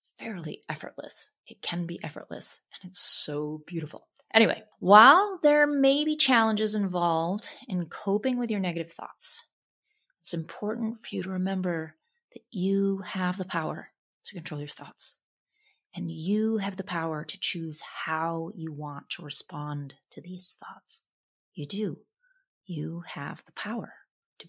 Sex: female